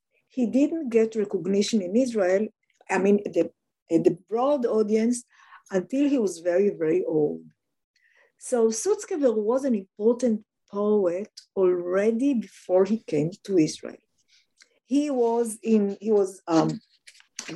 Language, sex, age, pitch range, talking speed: English, female, 50-69, 180-230 Hz, 125 wpm